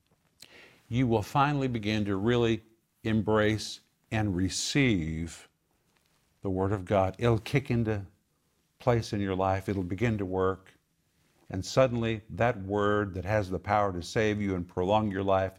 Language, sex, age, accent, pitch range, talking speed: English, male, 50-69, American, 95-125 Hz, 150 wpm